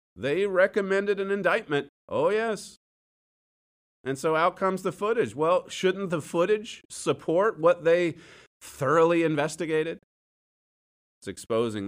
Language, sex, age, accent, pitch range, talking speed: English, male, 40-59, American, 145-220 Hz, 115 wpm